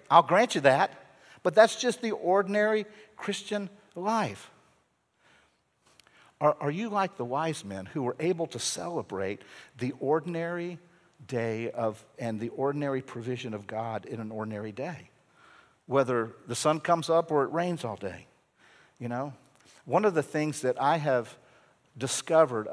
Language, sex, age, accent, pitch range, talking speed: English, male, 50-69, American, 130-180 Hz, 150 wpm